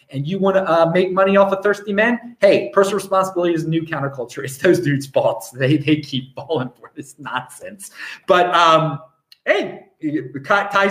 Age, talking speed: 30-49, 180 wpm